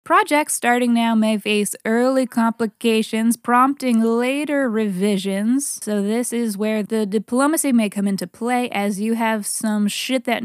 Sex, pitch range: female, 205-255 Hz